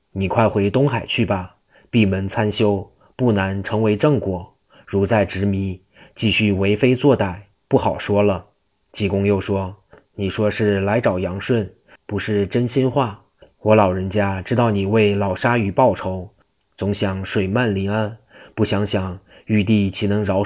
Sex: male